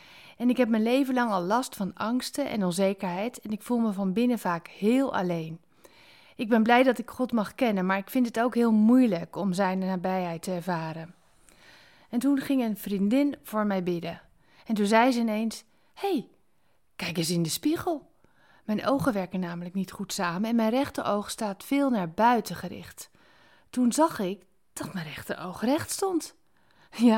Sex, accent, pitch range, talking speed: female, Dutch, 190-255 Hz, 190 wpm